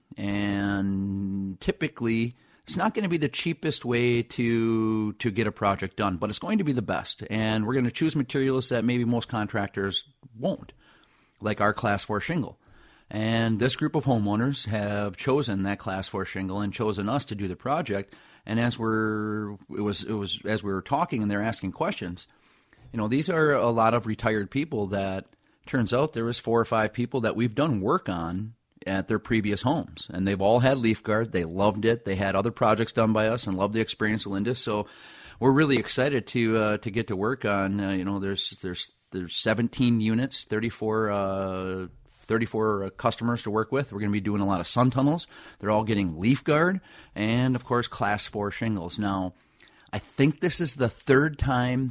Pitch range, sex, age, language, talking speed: 100-120 Hz, male, 30-49, English, 200 wpm